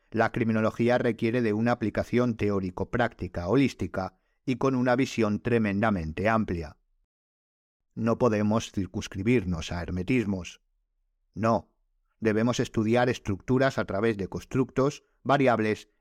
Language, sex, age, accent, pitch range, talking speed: Spanish, male, 50-69, Spanish, 95-120 Hz, 105 wpm